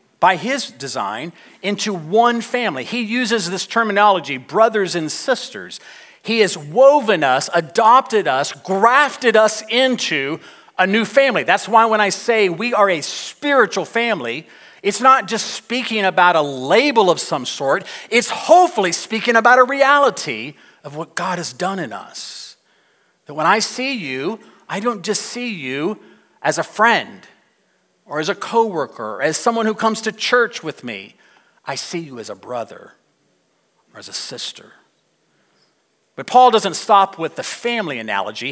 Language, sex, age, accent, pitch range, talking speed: English, male, 40-59, American, 175-240 Hz, 155 wpm